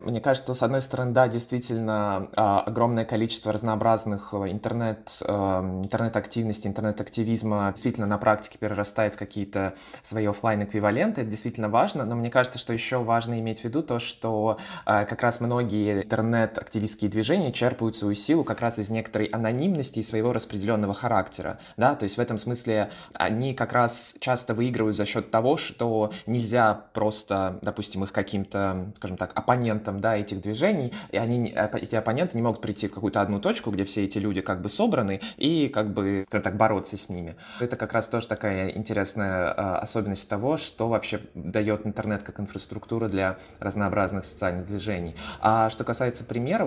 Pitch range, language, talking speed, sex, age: 105-115 Hz, Russian, 165 wpm, male, 20-39